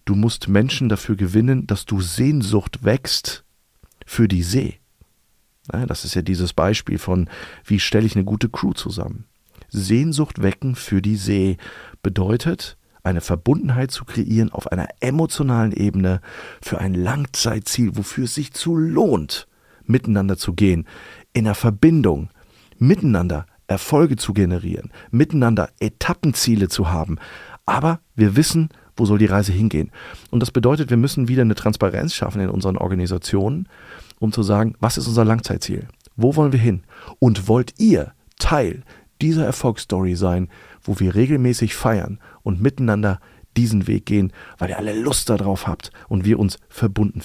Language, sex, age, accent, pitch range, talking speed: German, male, 50-69, German, 95-120 Hz, 150 wpm